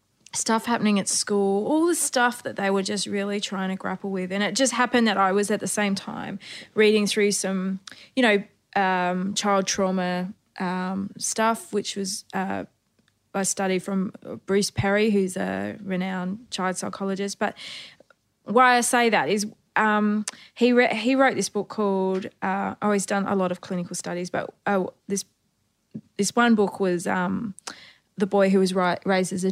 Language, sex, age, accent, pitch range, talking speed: English, female, 20-39, Australian, 185-215 Hz, 180 wpm